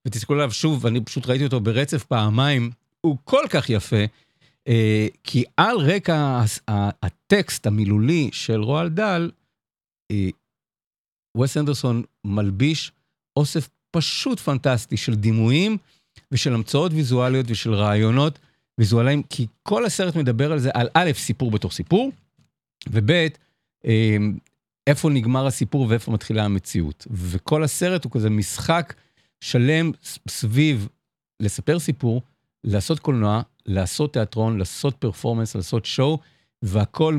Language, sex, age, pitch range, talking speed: Hebrew, male, 50-69, 110-150 Hz, 115 wpm